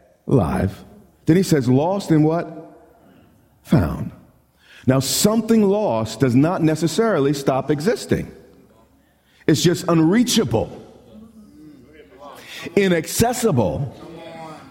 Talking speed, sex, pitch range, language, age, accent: 80 wpm, male, 110-165 Hz, English, 50-69, American